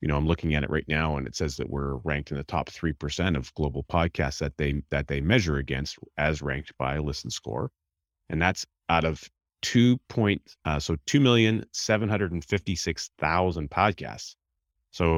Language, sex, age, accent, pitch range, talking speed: English, male, 30-49, American, 75-90 Hz, 175 wpm